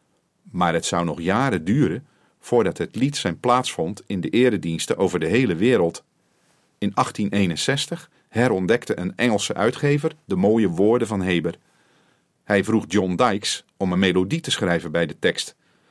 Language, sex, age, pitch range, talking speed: Dutch, male, 40-59, 90-135 Hz, 160 wpm